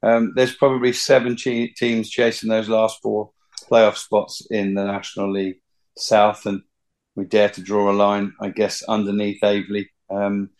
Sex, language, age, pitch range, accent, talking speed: male, English, 40-59, 110-130 Hz, British, 160 wpm